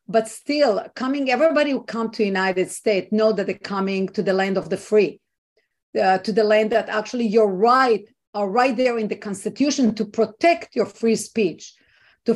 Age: 50-69